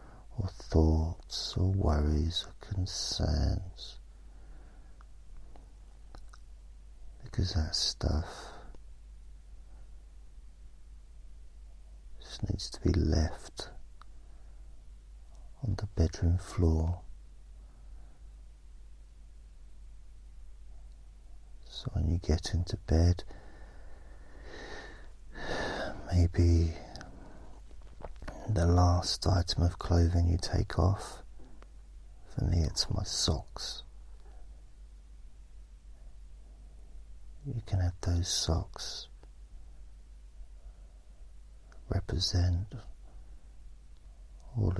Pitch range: 65-90 Hz